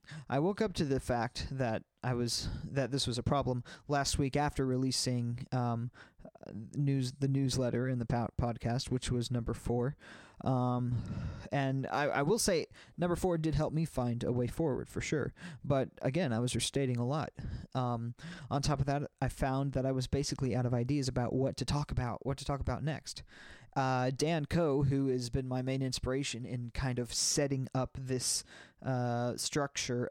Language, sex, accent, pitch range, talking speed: English, male, American, 125-145 Hz, 190 wpm